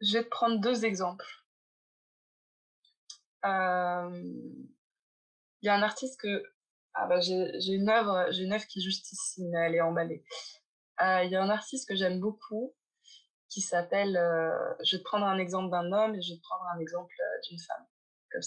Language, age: French, 20-39